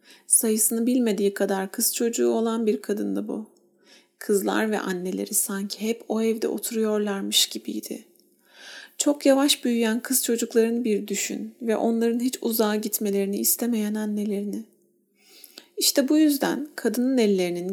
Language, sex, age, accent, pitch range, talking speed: Turkish, female, 40-59, native, 205-240 Hz, 125 wpm